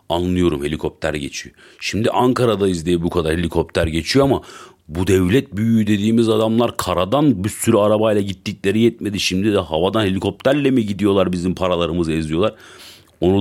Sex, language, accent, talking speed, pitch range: male, Turkish, native, 145 wpm, 85-110 Hz